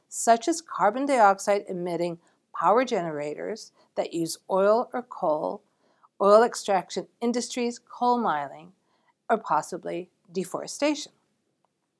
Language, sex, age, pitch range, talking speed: English, female, 50-69, 175-240 Hz, 95 wpm